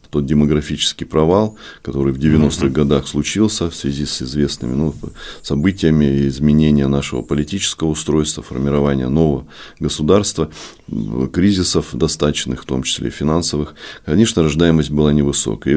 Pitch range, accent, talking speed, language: 75-85 Hz, native, 120 wpm, Russian